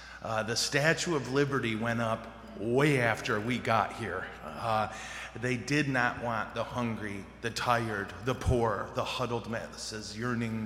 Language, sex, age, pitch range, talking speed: English, male, 30-49, 110-130 Hz, 150 wpm